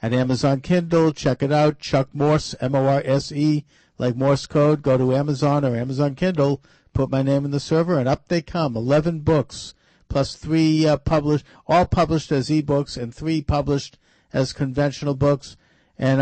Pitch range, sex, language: 135-160 Hz, male, English